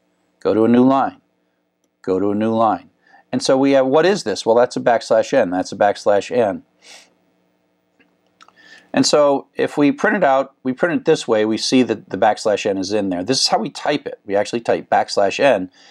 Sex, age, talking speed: male, 50-69, 220 wpm